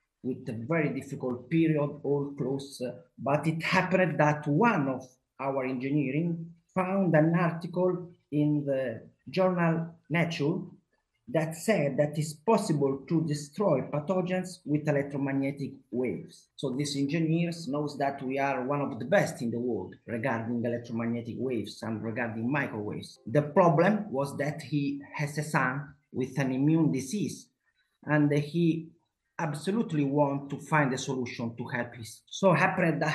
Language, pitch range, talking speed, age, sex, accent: English, 135-165 Hz, 145 wpm, 30-49, male, Italian